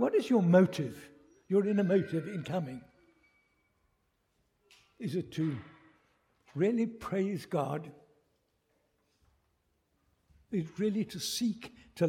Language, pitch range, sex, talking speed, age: English, 135-205 Hz, male, 105 wpm, 60-79